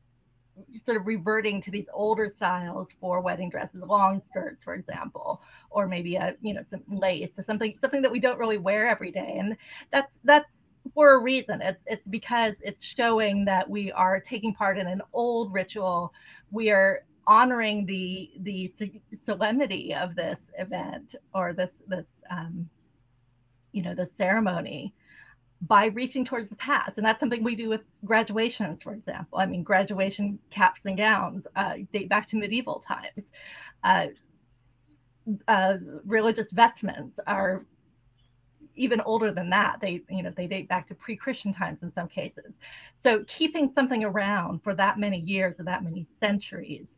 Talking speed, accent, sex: 160 wpm, American, female